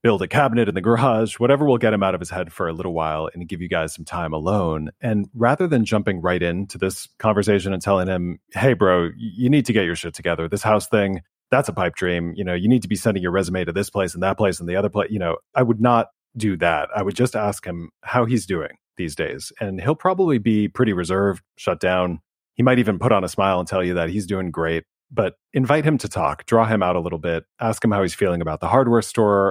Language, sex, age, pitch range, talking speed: English, male, 30-49, 90-115 Hz, 265 wpm